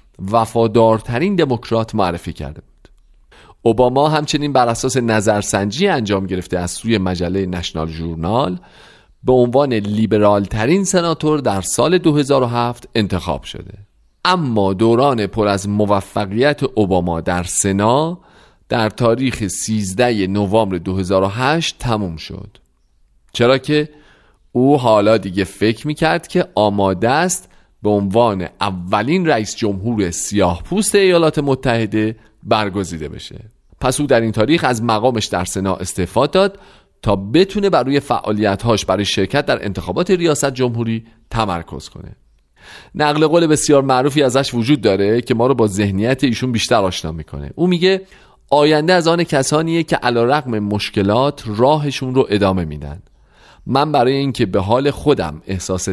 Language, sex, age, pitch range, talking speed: Persian, male, 40-59, 95-140 Hz, 130 wpm